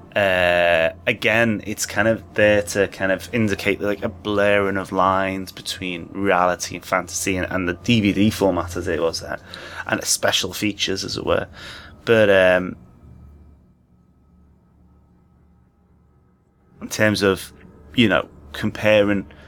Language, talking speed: English, 130 wpm